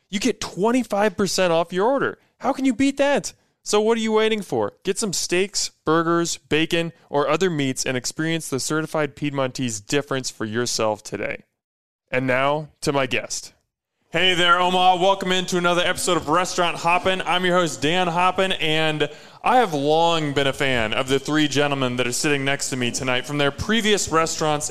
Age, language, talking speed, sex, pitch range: 20-39, English, 185 wpm, male, 135-185 Hz